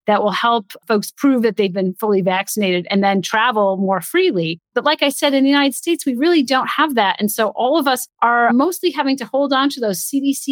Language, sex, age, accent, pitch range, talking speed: English, female, 30-49, American, 190-235 Hz, 240 wpm